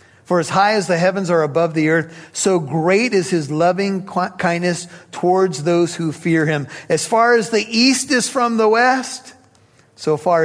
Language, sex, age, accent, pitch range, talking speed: English, male, 50-69, American, 135-170 Hz, 185 wpm